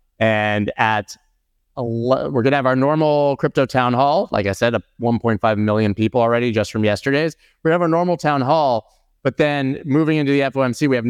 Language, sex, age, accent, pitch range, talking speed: English, male, 30-49, American, 105-140 Hz, 195 wpm